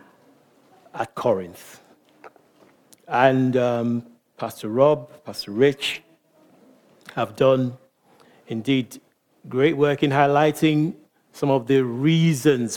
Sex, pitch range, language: male, 130-155 Hz, English